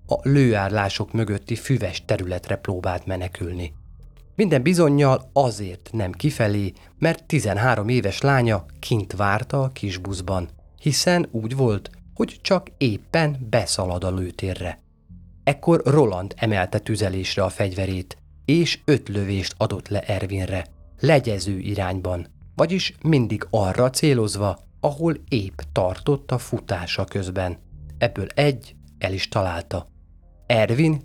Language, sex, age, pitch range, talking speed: Hungarian, male, 30-49, 90-120 Hz, 115 wpm